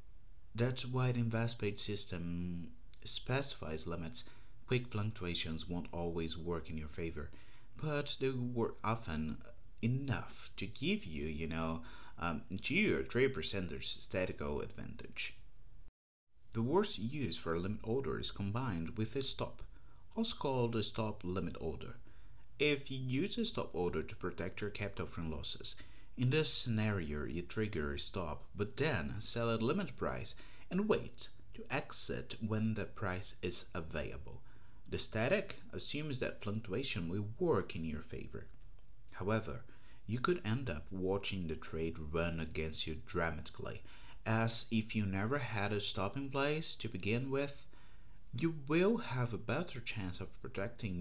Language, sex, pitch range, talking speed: English, male, 90-125 Hz, 150 wpm